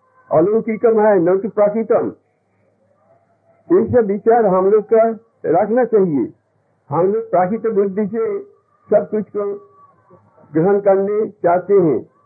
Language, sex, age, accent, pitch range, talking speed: Hindi, male, 60-79, native, 185-225 Hz, 55 wpm